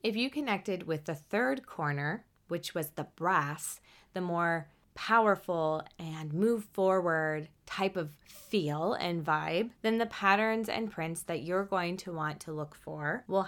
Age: 20-39